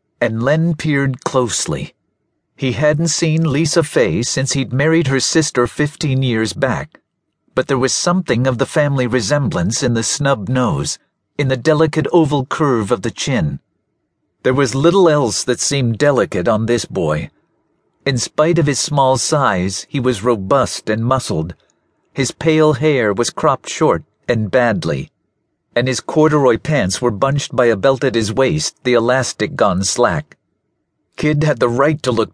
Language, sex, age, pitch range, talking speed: English, male, 50-69, 115-145 Hz, 165 wpm